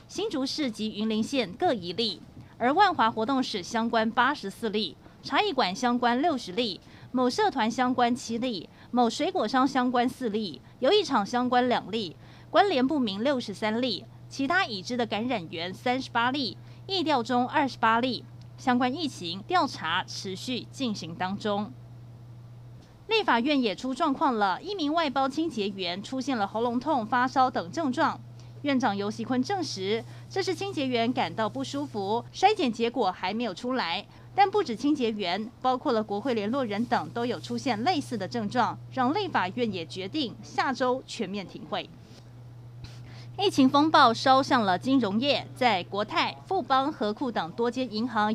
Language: Chinese